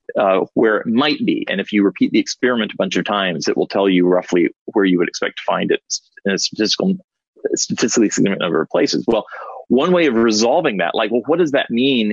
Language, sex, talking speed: English, male, 235 wpm